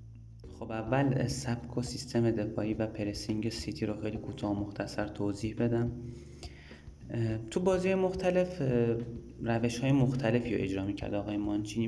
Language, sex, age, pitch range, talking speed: Persian, male, 30-49, 105-120 Hz, 120 wpm